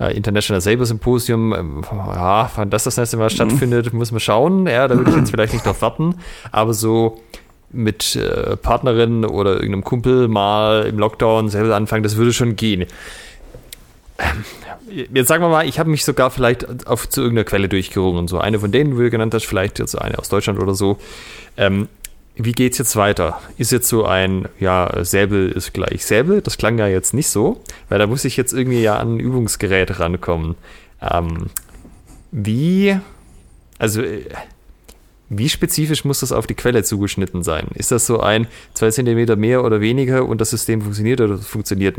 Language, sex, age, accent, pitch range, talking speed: German, male, 30-49, German, 100-125 Hz, 185 wpm